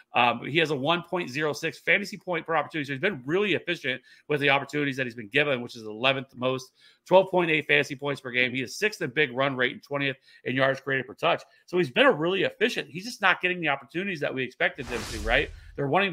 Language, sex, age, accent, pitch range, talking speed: English, male, 30-49, American, 125-160 Hz, 240 wpm